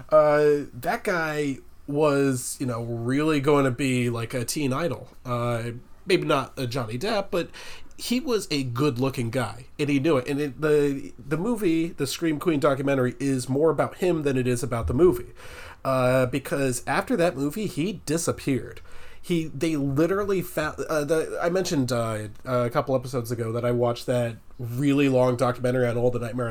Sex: male